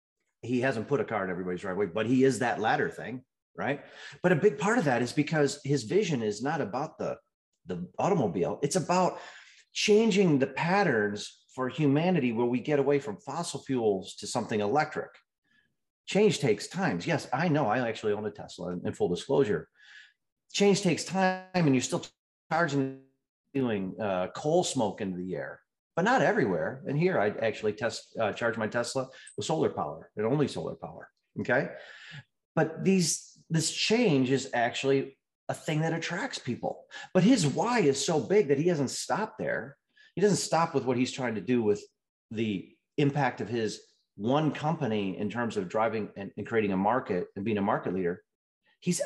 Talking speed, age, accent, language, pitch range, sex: 180 wpm, 40-59, American, English, 115-165 Hz, male